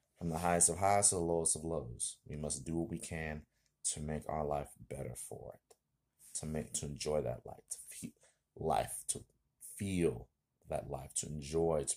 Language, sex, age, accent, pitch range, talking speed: English, male, 30-49, American, 75-90 Hz, 195 wpm